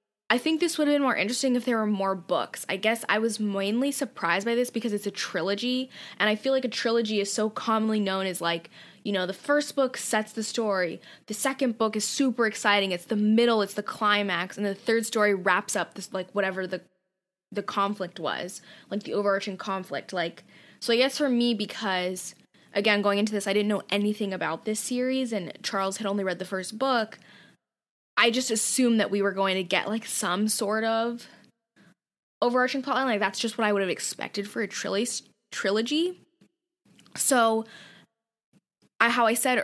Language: English